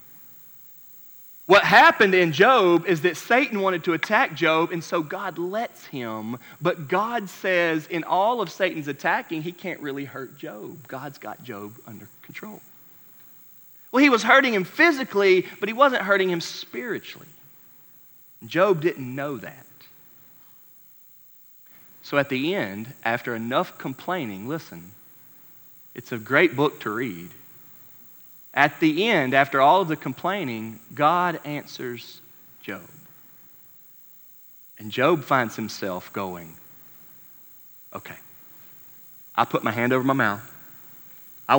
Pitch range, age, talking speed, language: 115-180 Hz, 40-59, 130 wpm, English